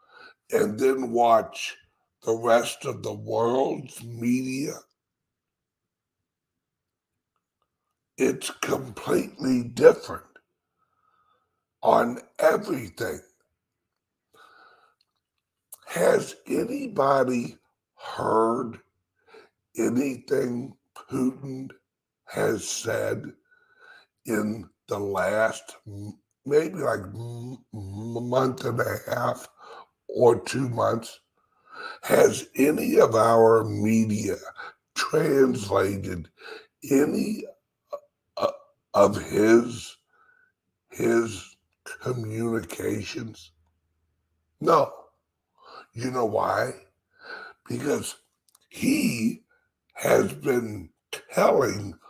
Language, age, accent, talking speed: English, 60-79, American, 60 wpm